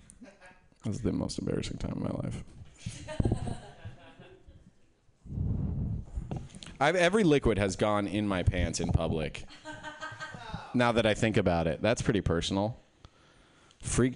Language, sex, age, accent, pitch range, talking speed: English, male, 30-49, American, 90-140 Hz, 120 wpm